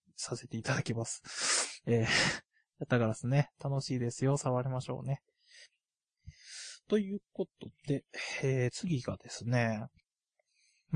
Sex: male